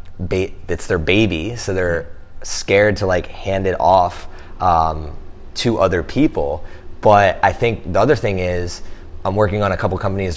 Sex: male